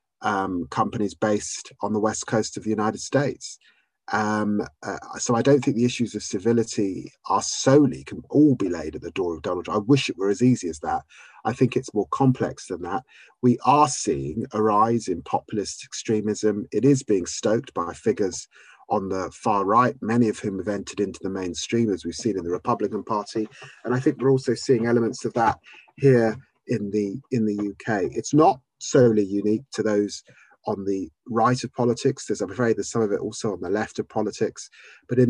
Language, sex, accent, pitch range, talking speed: English, male, British, 105-125 Hz, 205 wpm